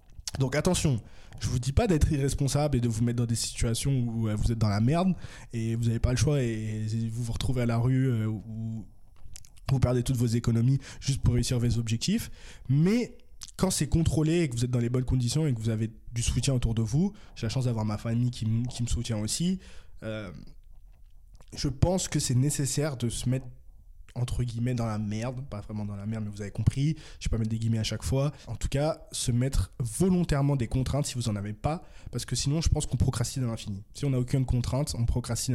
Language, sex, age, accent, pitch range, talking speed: French, male, 20-39, French, 110-135 Hz, 240 wpm